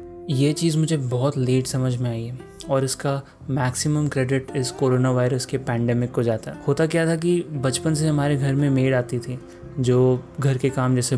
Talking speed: 205 wpm